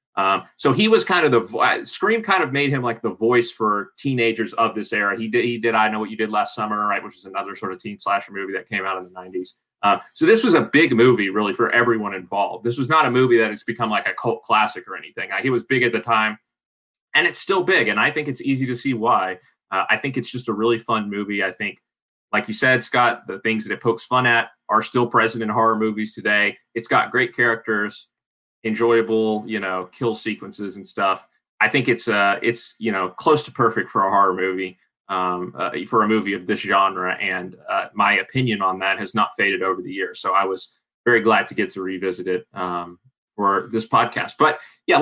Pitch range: 100-120 Hz